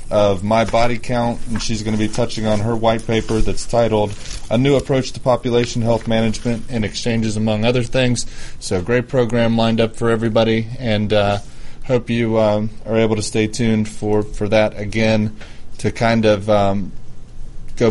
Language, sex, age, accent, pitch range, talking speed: English, male, 20-39, American, 100-115 Hz, 180 wpm